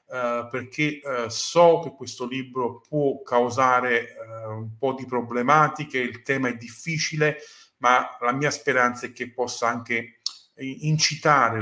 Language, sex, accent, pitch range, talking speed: Italian, male, native, 115-145 Hz, 125 wpm